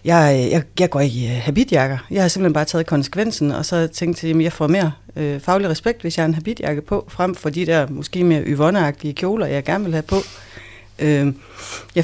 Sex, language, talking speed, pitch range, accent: female, Danish, 210 wpm, 130-165 Hz, native